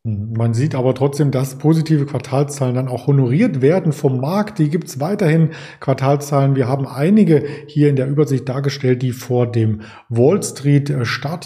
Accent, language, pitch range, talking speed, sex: German, German, 125-150 Hz, 155 wpm, male